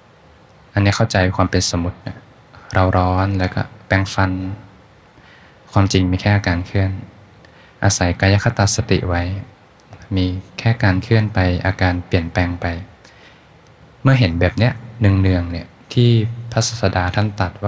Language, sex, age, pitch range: Thai, male, 20-39, 90-105 Hz